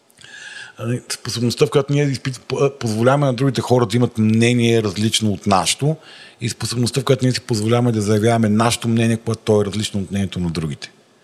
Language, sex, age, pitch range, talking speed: Bulgarian, male, 40-59, 105-120 Hz, 175 wpm